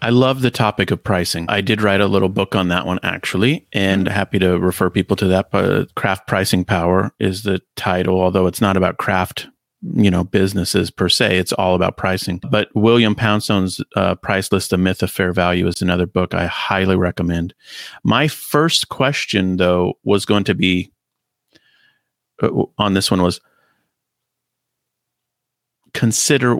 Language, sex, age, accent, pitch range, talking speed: English, male, 30-49, American, 95-110 Hz, 165 wpm